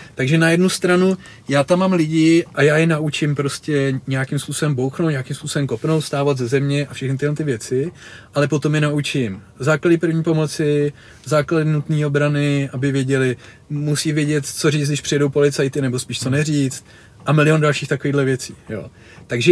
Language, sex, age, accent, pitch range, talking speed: Czech, male, 30-49, native, 130-160 Hz, 175 wpm